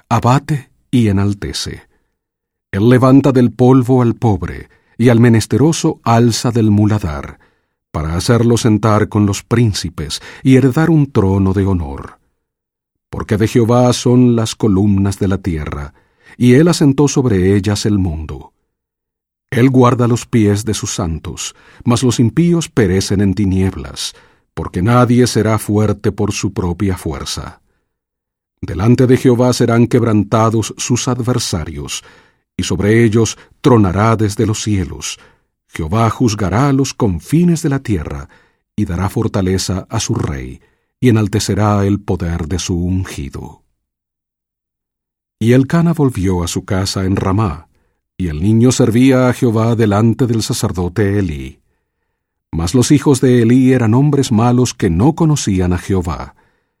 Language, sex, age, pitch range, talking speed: English, male, 50-69, 95-125 Hz, 135 wpm